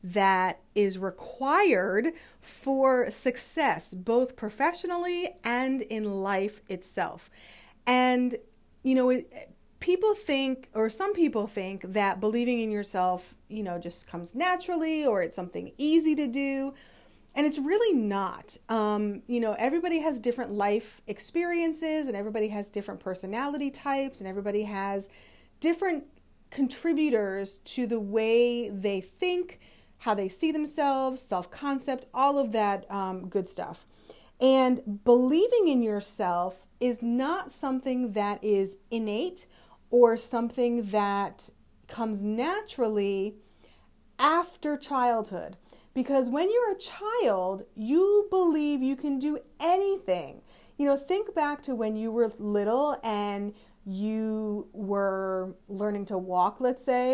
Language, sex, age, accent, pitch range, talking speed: English, female, 30-49, American, 205-290 Hz, 125 wpm